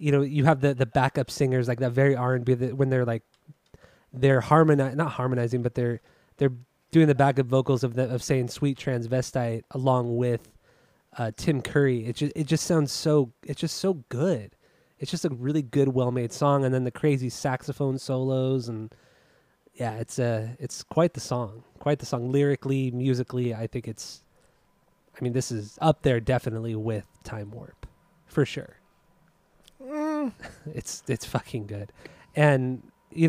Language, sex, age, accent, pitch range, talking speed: English, male, 20-39, American, 120-145 Hz, 175 wpm